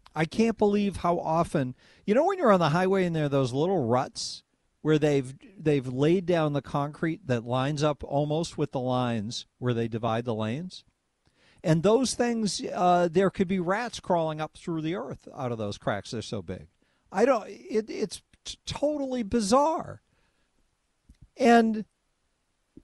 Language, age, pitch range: English, 50-69, 115-165 Hz